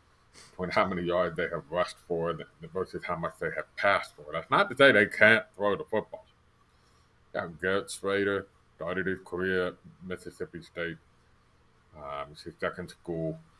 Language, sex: English, male